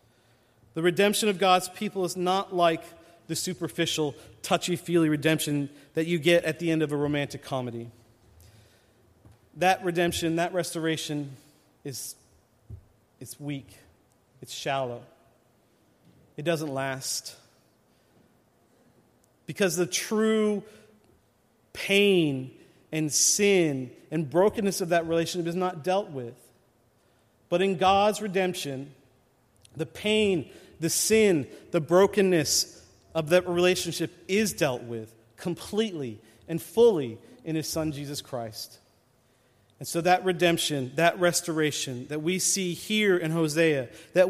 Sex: male